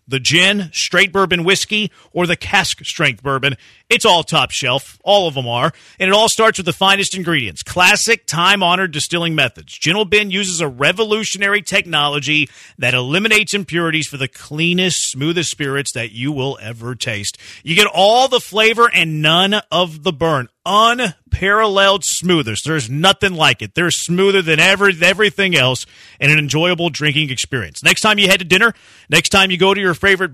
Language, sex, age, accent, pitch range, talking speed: English, male, 40-59, American, 145-195 Hz, 175 wpm